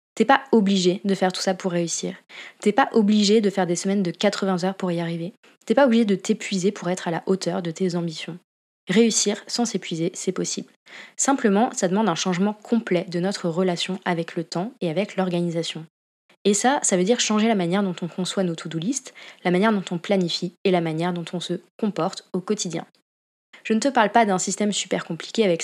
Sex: female